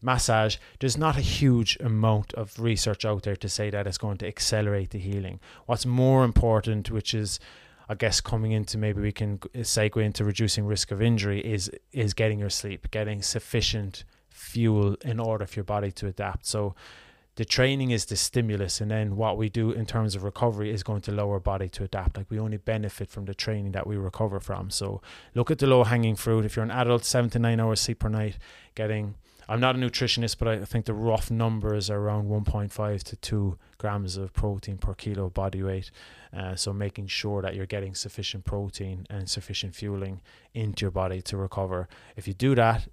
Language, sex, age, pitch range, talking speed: English, male, 20-39, 100-115 Hz, 205 wpm